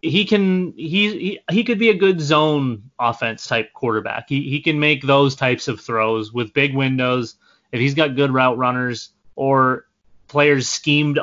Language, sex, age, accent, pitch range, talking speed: English, male, 30-49, American, 120-140 Hz, 175 wpm